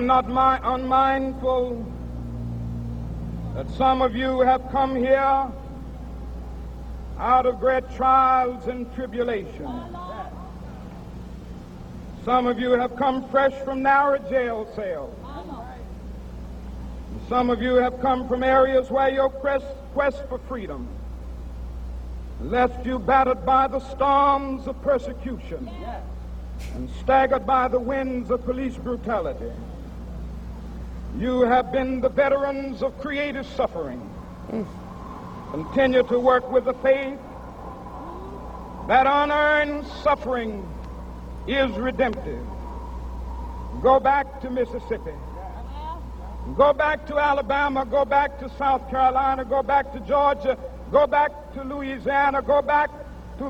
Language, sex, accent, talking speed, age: English, male, American, 110 wpm, 60-79